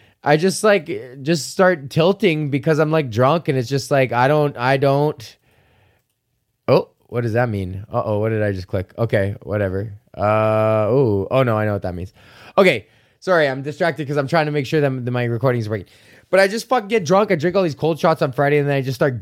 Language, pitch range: English, 115-155 Hz